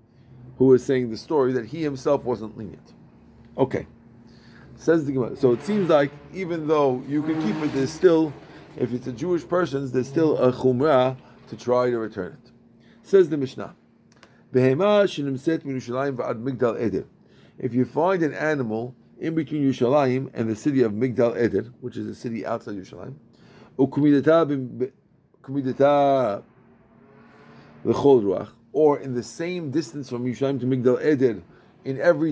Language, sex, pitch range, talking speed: English, male, 120-150 Hz, 140 wpm